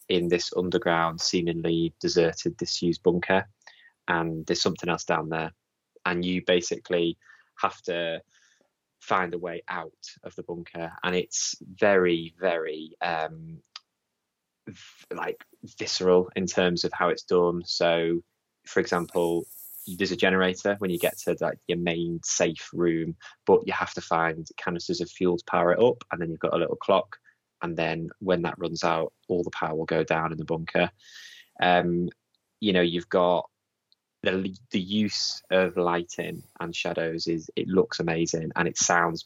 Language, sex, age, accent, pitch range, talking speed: English, male, 20-39, British, 85-90 Hz, 160 wpm